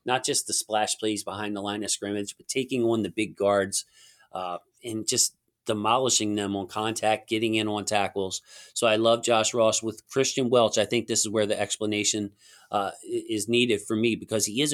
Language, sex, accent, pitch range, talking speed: English, male, American, 100-115 Hz, 205 wpm